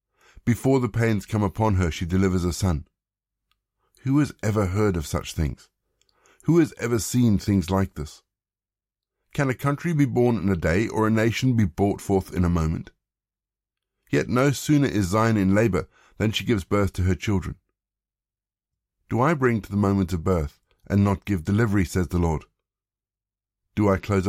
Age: 50-69